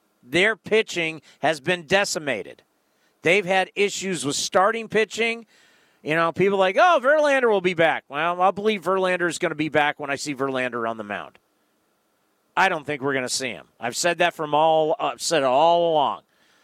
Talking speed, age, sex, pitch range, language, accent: 190 wpm, 40-59, male, 155-210 Hz, English, American